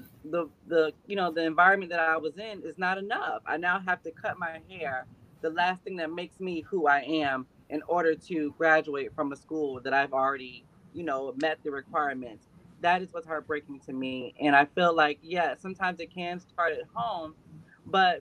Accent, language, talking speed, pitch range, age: American, English, 205 wpm, 150-180 Hz, 20-39